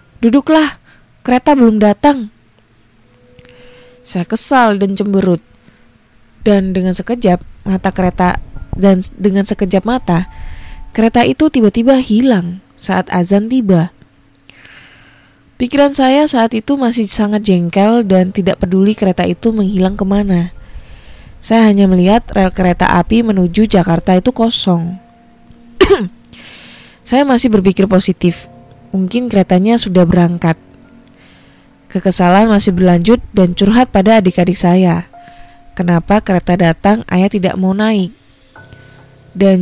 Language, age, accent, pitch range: Indonesian, 20-39, native, 175-215 Hz